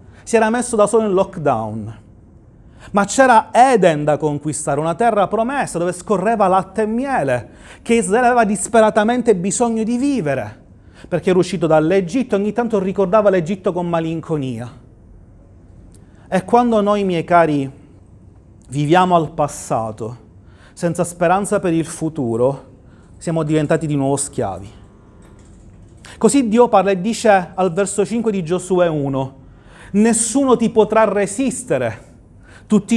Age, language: 30-49, Italian